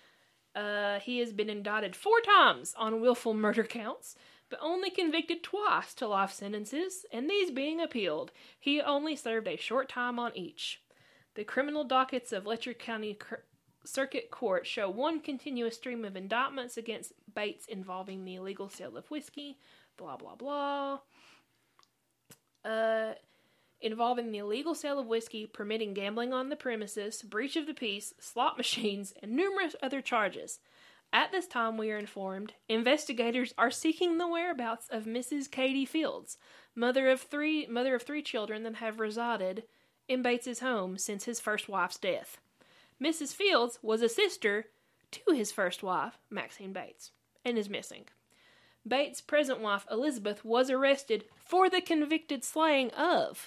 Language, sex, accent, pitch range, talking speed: English, female, American, 220-285 Hz, 150 wpm